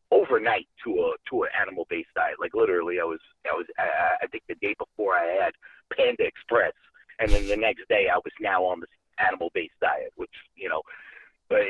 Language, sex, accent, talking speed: English, male, American, 200 wpm